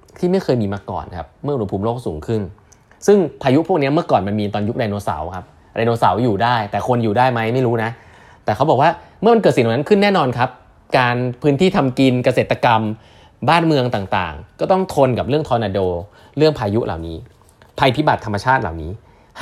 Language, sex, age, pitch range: Thai, male, 20-39, 100-135 Hz